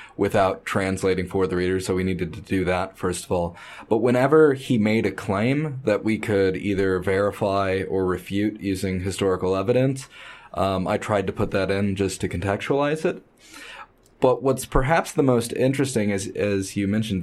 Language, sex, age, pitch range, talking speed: English, male, 20-39, 95-110 Hz, 180 wpm